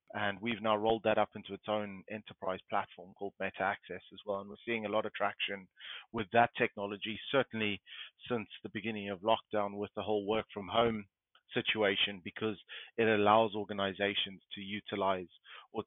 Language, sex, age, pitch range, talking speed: English, male, 30-49, 100-110 Hz, 165 wpm